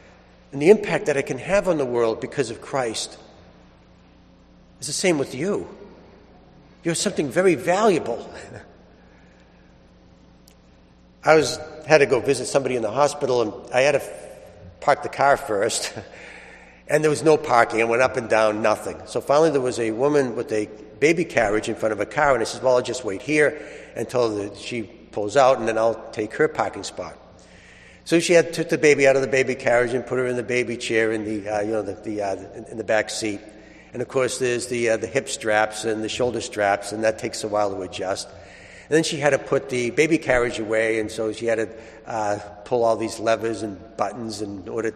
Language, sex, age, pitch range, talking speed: English, male, 60-79, 105-135 Hz, 215 wpm